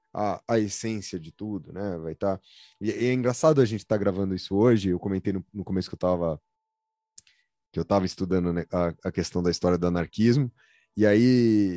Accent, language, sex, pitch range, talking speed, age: Brazilian, Portuguese, male, 100-150 Hz, 205 wpm, 20-39